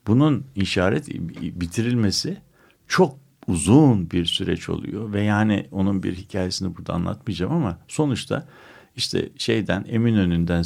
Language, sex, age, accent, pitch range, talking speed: Turkish, male, 60-79, native, 90-120 Hz, 115 wpm